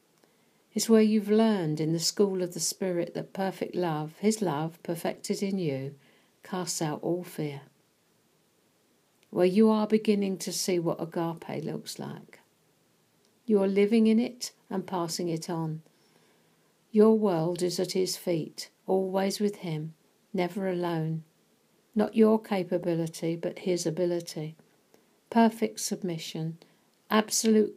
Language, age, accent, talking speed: English, 50-69, British, 130 wpm